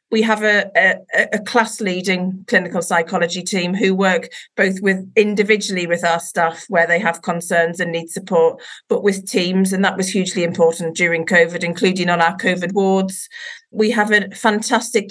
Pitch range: 180-220 Hz